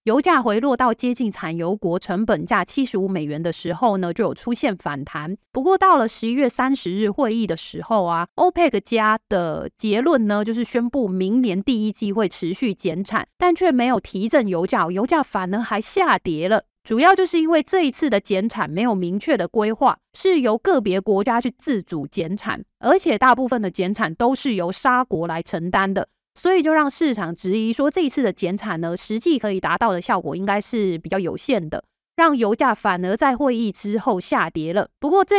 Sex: female